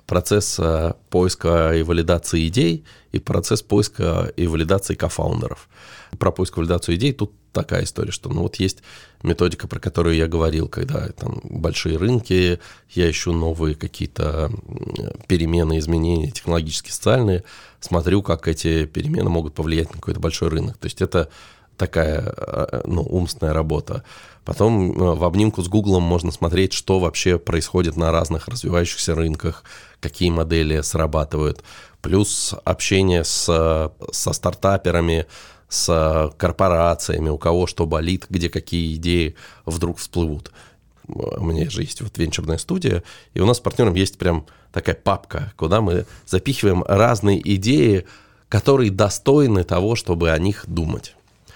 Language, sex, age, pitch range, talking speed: Russian, male, 20-39, 80-100 Hz, 135 wpm